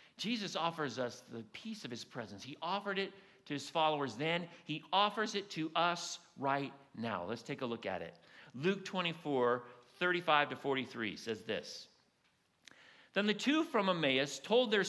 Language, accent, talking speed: English, American, 170 wpm